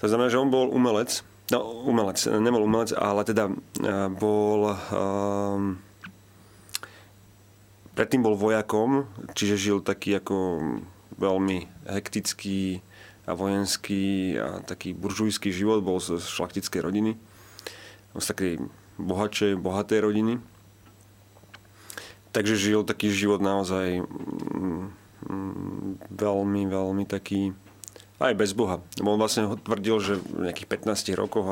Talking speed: 110 wpm